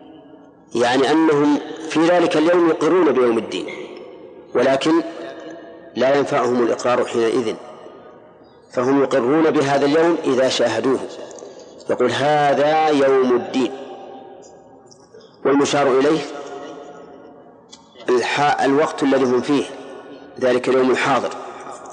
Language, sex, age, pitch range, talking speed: Arabic, male, 50-69, 130-155 Hz, 90 wpm